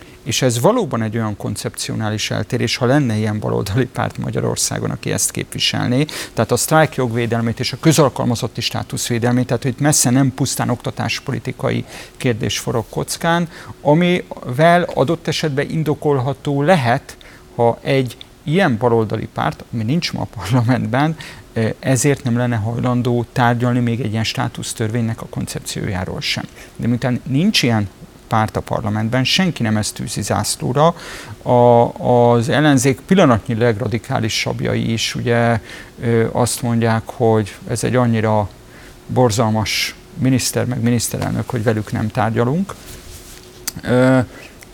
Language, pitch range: Hungarian, 115-135 Hz